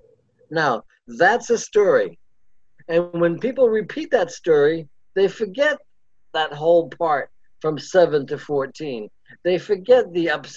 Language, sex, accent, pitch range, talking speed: English, male, American, 150-235 Hz, 130 wpm